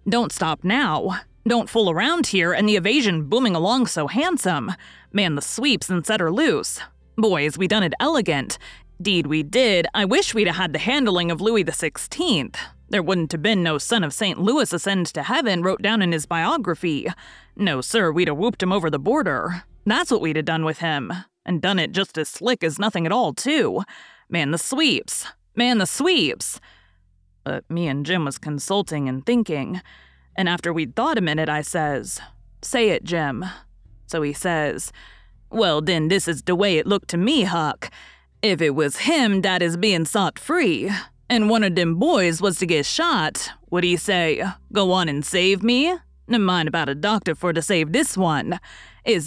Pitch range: 160-225 Hz